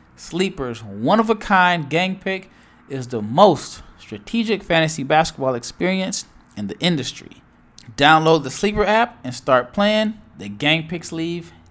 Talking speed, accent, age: 130 wpm, American, 20-39